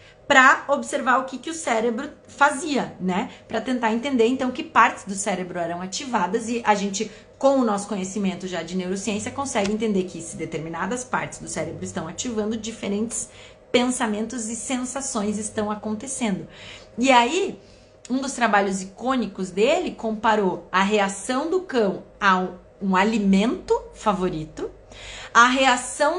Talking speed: 145 wpm